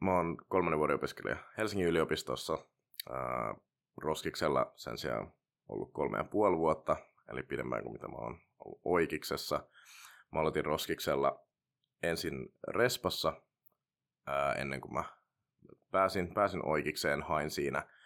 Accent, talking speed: native, 125 wpm